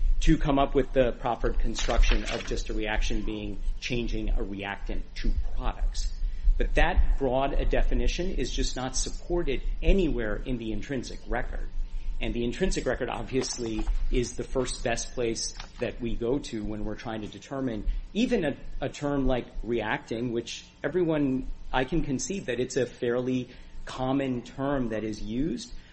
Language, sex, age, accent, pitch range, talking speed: English, male, 40-59, American, 105-135 Hz, 160 wpm